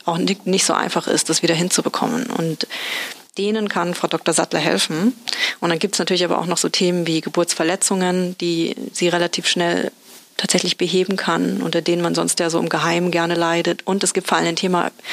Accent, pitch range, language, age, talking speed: German, 170-195 Hz, German, 30-49, 205 wpm